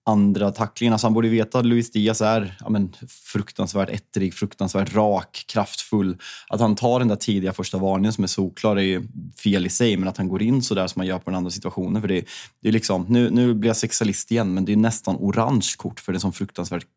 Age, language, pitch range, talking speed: 20-39, Swedish, 95-115 Hz, 235 wpm